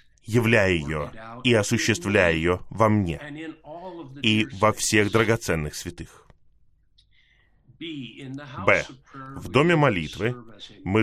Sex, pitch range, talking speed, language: male, 95-125 Hz, 90 wpm, Russian